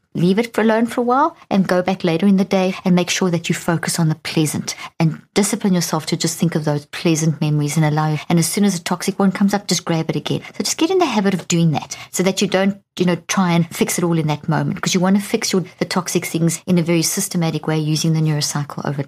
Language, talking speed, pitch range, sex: English, 280 wpm, 160-195 Hz, female